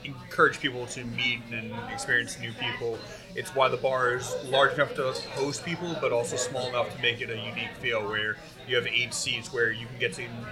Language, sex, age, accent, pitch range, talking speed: English, male, 30-49, American, 110-125 Hz, 215 wpm